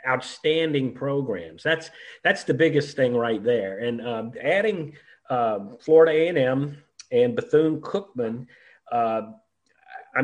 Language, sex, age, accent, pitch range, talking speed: English, male, 40-59, American, 130-160 Hz, 110 wpm